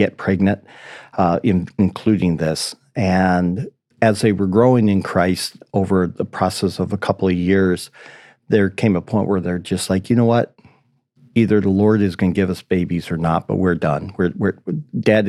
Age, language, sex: 50-69, English, male